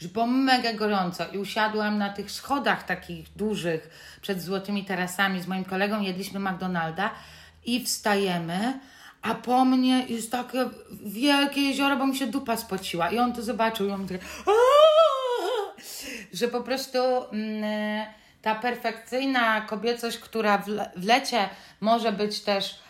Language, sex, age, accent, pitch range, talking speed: Polish, female, 30-49, native, 185-225 Hz, 135 wpm